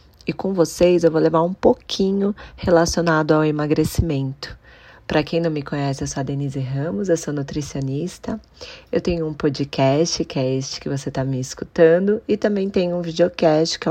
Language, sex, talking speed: Portuguese, female, 180 wpm